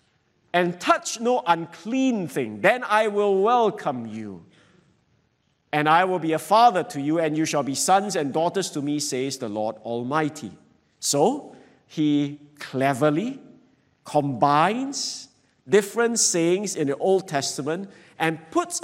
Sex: male